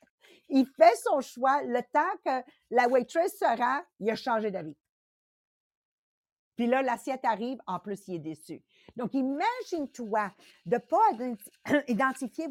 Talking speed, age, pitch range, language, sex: 140 wpm, 50-69, 195-260 Hz, English, female